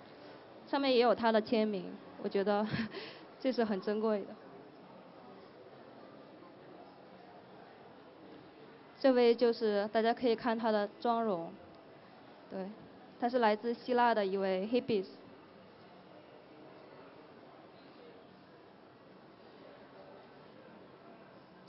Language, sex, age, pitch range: Chinese, female, 20-39, 205-245 Hz